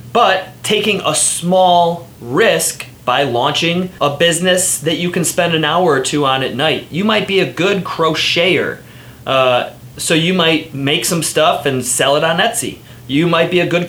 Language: English